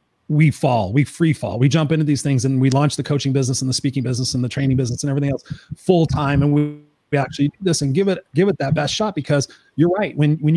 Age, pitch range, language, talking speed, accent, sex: 30-49, 140-170 Hz, English, 275 wpm, American, male